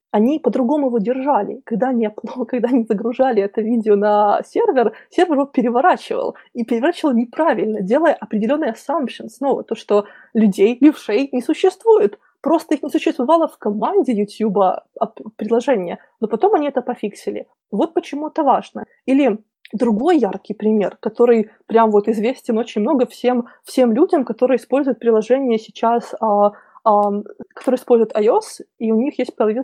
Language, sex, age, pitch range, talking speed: Russian, female, 20-39, 215-275 Hz, 140 wpm